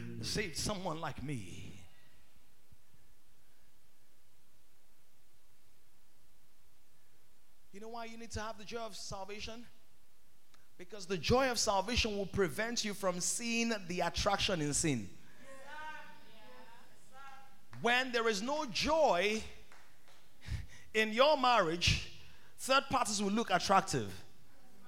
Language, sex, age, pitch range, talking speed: English, male, 30-49, 175-235 Hz, 100 wpm